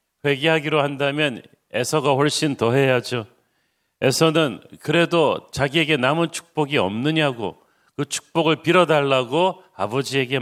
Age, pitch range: 40-59, 130-155 Hz